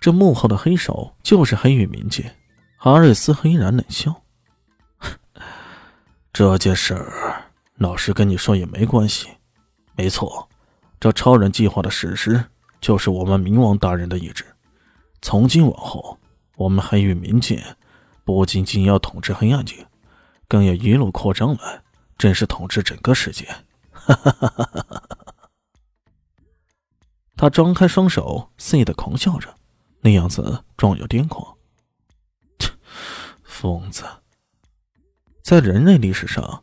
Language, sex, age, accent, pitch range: Chinese, male, 20-39, native, 100-140 Hz